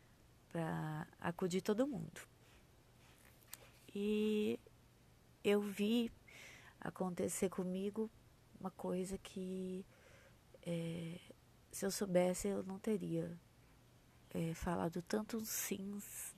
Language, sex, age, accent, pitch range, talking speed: Portuguese, female, 20-39, Brazilian, 155-185 Hz, 85 wpm